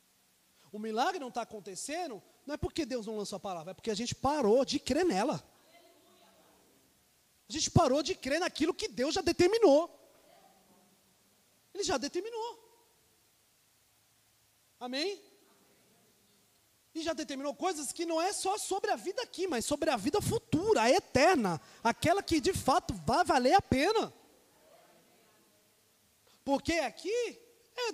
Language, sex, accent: Portuguese, male, Brazilian